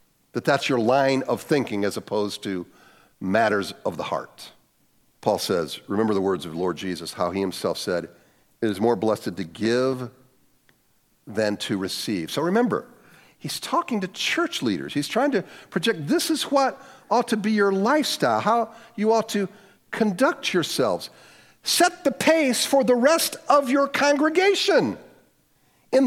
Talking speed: 160 wpm